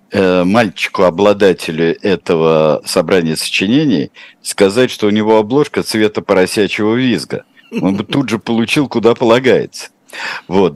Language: Russian